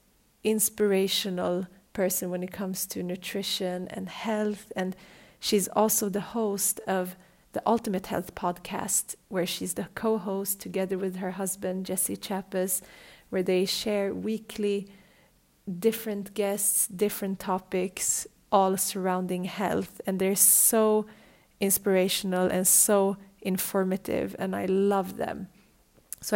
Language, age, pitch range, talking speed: English, 30-49, 190-210 Hz, 120 wpm